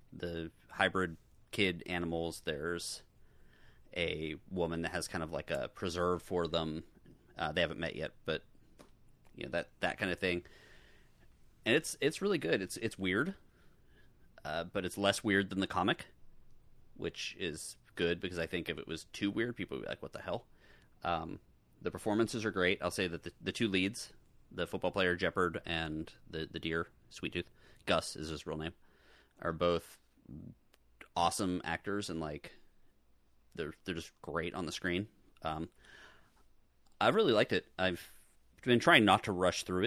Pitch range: 85-95 Hz